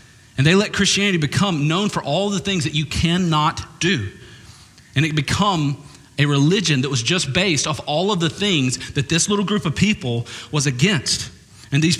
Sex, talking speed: male, 190 wpm